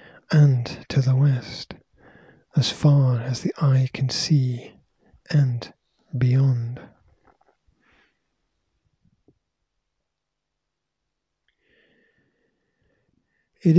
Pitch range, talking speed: 130-150 Hz, 60 wpm